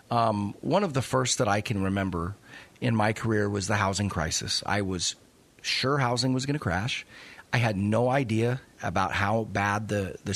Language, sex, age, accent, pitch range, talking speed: English, male, 30-49, American, 95-120 Hz, 190 wpm